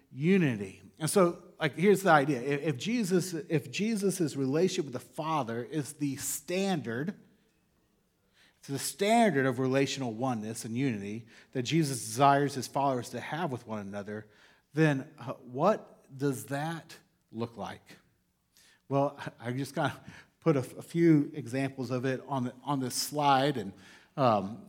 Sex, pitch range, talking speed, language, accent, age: male, 135-175 Hz, 145 wpm, English, American, 40-59